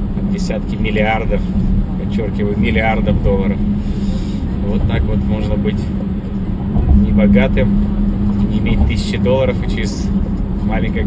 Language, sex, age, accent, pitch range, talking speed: Russian, male, 20-39, native, 95-105 Hz, 100 wpm